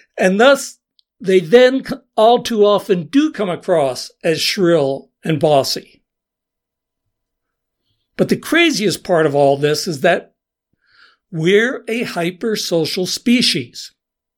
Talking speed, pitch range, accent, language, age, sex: 115 wpm, 160-225 Hz, American, English, 60-79, male